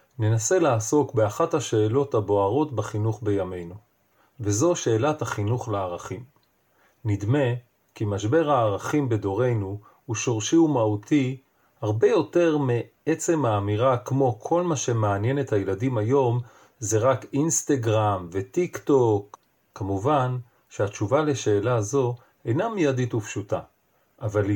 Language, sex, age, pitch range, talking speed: Hebrew, male, 40-59, 105-140 Hz, 105 wpm